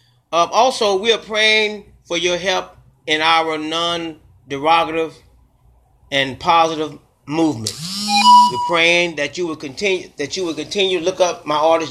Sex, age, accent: male, 30-49, American